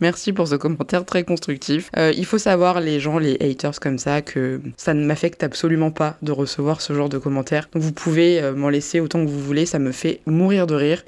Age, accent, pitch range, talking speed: 20-39, French, 150-185 Hz, 225 wpm